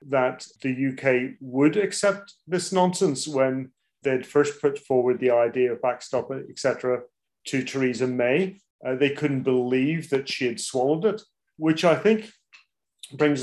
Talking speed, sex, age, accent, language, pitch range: 150 wpm, male, 40-59, British, English, 130-155 Hz